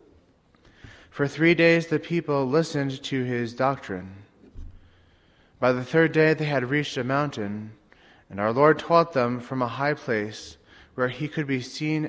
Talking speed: 160 wpm